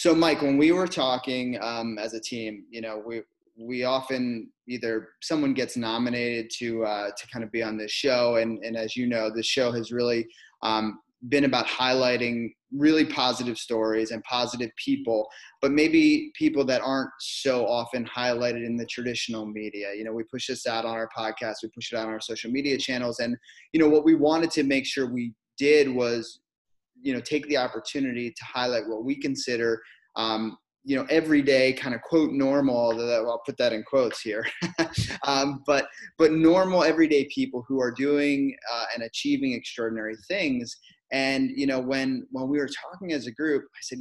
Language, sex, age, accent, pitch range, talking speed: English, male, 20-39, American, 115-140 Hz, 190 wpm